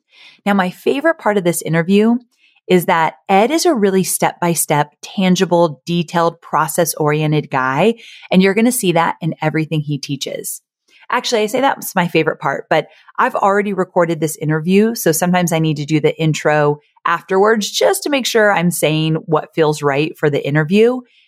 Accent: American